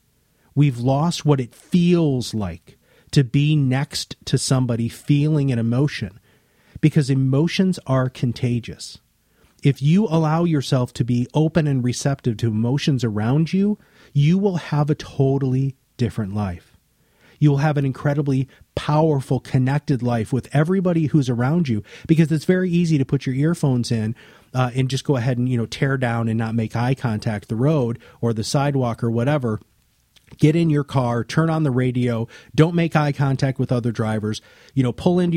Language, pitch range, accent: English, 120-150 Hz, American